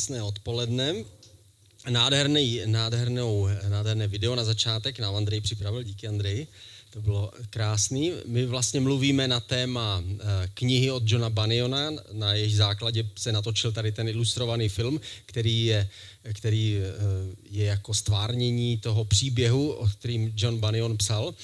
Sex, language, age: male, Czech, 30-49